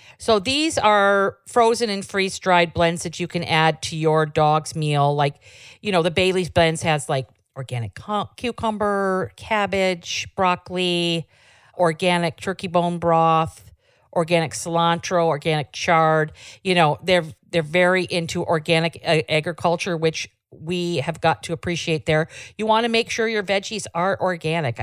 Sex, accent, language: female, American, English